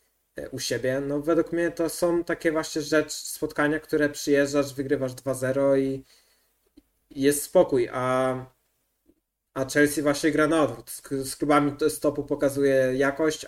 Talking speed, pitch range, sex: 135 wpm, 130-155 Hz, male